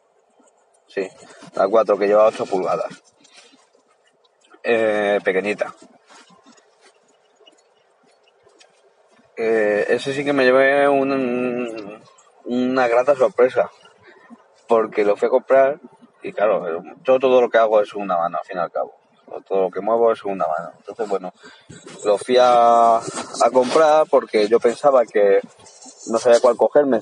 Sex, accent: male, Spanish